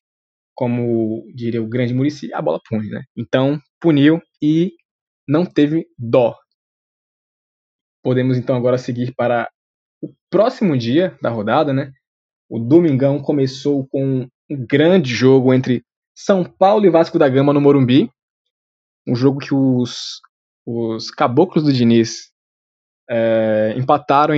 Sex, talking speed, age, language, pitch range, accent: male, 130 wpm, 20-39, Portuguese, 125-160 Hz, Brazilian